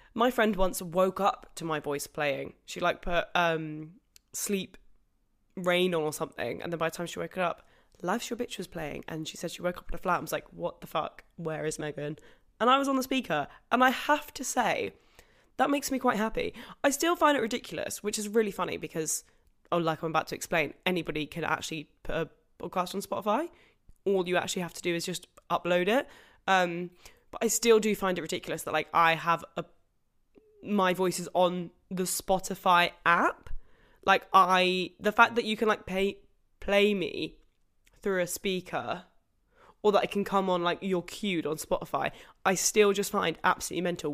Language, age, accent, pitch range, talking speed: English, 10-29, British, 170-210 Hz, 205 wpm